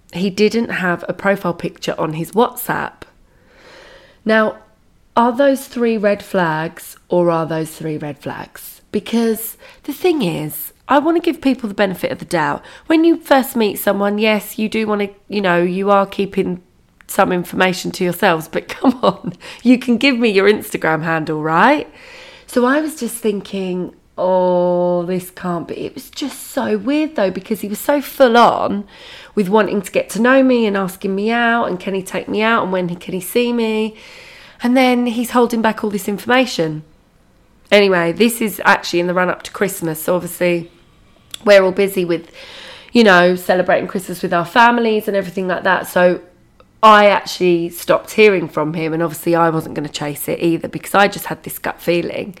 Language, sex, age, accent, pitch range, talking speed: English, female, 20-39, British, 175-235 Hz, 190 wpm